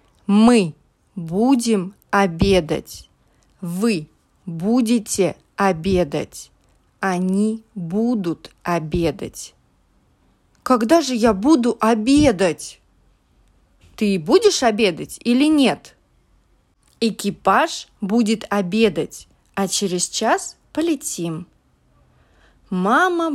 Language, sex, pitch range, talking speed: English, female, 180-245 Hz, 70 wpm